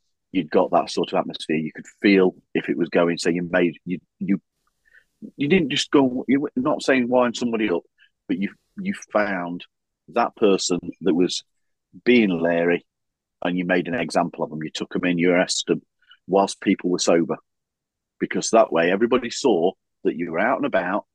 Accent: British